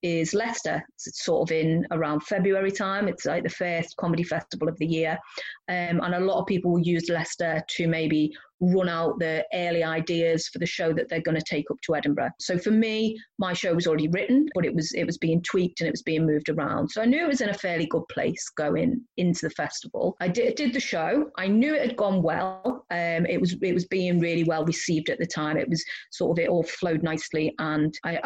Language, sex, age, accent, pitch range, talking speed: English, female, 30-49, British, 165-230 Hz, 240 wpm